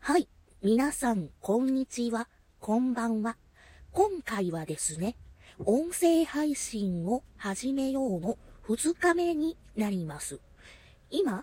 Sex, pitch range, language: female, 185-265 Hz, Japanese